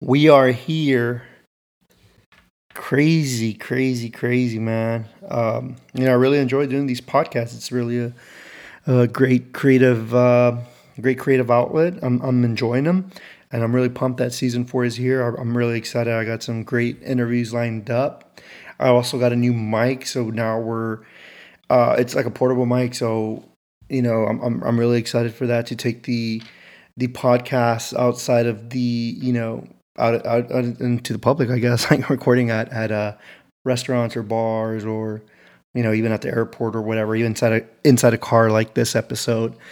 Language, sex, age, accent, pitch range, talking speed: English, male, 30-49, American, 115-130 Hz, 180 wpm